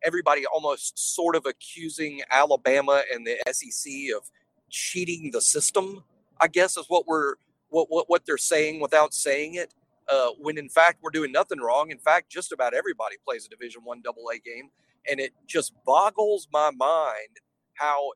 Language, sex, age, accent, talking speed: English, male, 40-59, American, 170 wpm